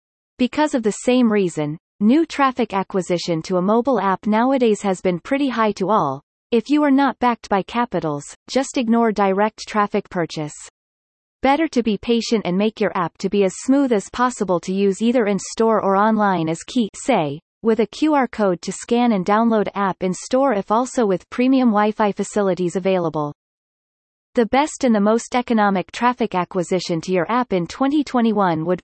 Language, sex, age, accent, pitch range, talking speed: English, female, 30-49, American, 185-240 Hz, 175 wpm